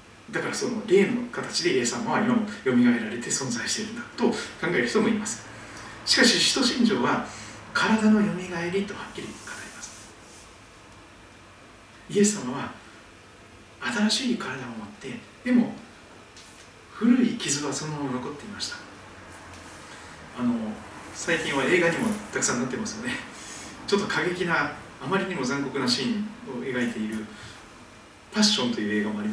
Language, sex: Japanese, male